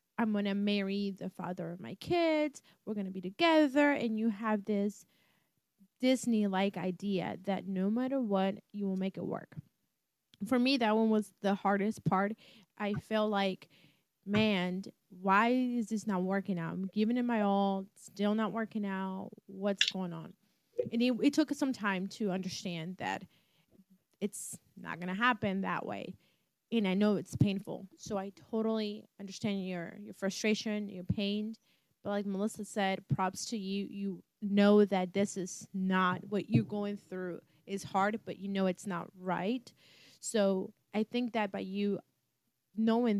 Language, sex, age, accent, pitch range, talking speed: English, female, 20-39, American, 190-215 Hz, 165 wpm